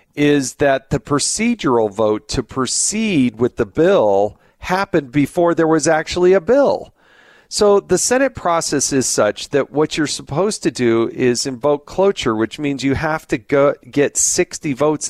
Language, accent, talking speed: English, American, 160 wpm